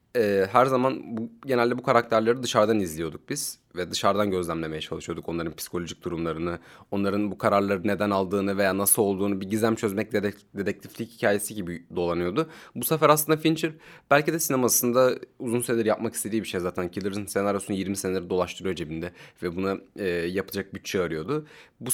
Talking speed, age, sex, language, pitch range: 155 wpm, 30-49, male, Turkish, 100-135 Hz